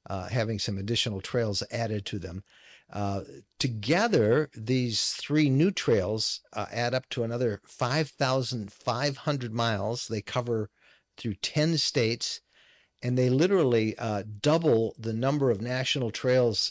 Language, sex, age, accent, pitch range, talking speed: English, male, 50-69, American, 105-130 Hz, 130 wpm